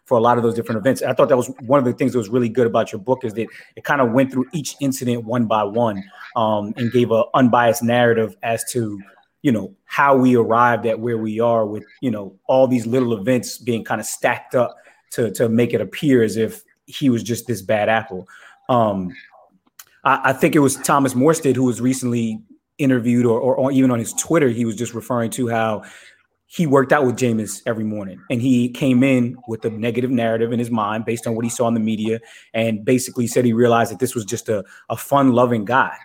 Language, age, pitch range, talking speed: English, 30-49, 110-130 Hz, 235 wpm